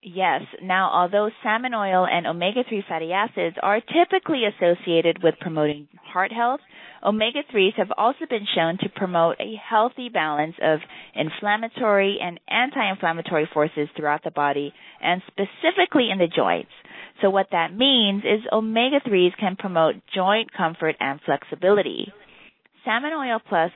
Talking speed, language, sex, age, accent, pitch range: 135 wpm, English, female, 30-49, American, 165-220 Hz